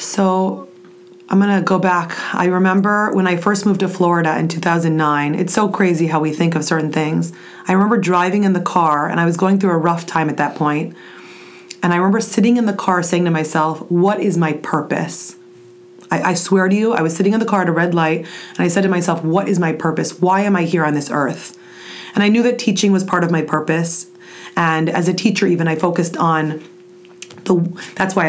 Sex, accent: female, American